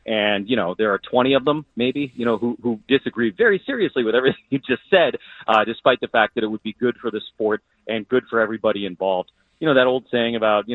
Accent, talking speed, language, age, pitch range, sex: American, 250 wpm, English, 40-59, 105-120 Hz, male